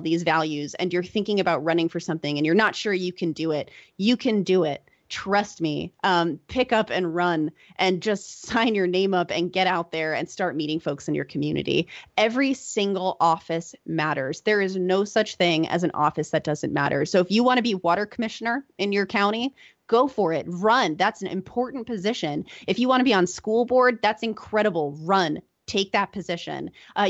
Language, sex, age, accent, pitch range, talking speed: English, female, 30-49, American, 170-220 Hz, 210 wpm